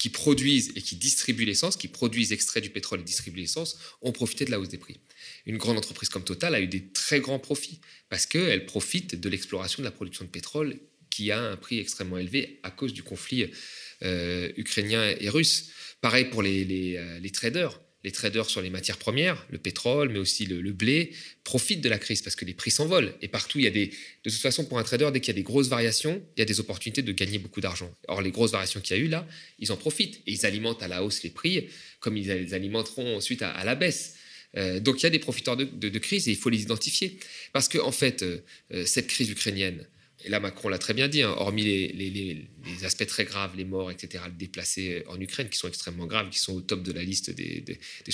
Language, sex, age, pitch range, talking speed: French, male, 30-49, 95-130 Hz, 250 wpm